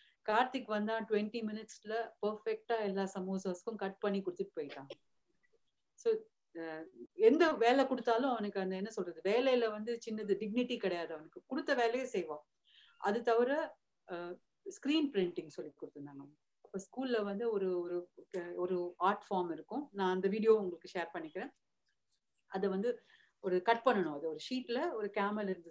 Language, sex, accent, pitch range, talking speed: English, female, Indian, 175-220 Hz, 100 wpm